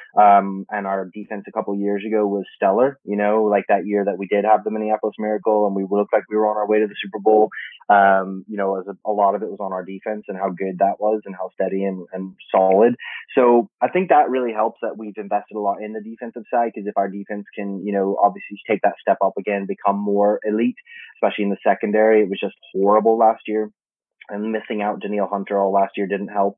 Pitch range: 100-115 Hz